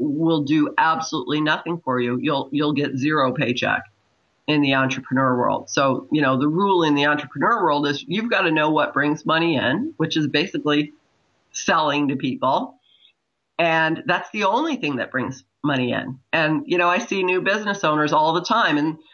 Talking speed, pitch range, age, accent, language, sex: 190 wpm, 145-170 Hz, 40-59, American, English, female